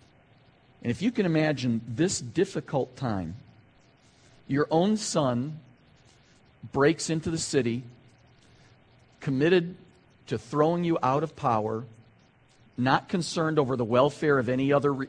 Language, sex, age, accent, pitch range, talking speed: English, male, 50-69, American, 130-170 Hz, 120 wpm